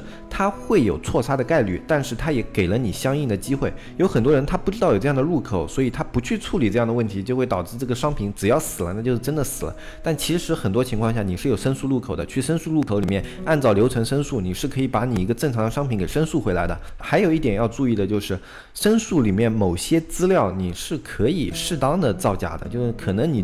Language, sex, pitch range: Chinese, male, 105-140 Hz